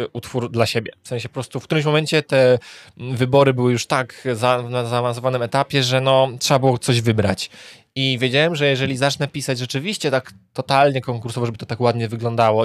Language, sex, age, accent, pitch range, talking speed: Polish, male, 20-39, native, 115-130 Hz, 190 wpm